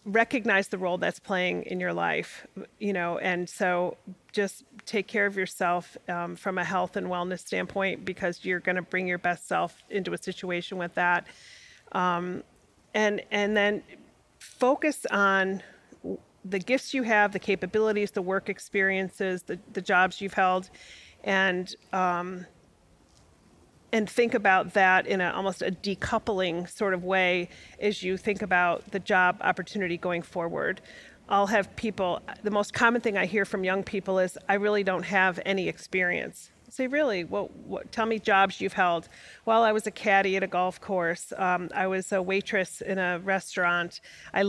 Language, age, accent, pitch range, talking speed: English, 40-59, American, 180-205 Hz, 165 wpm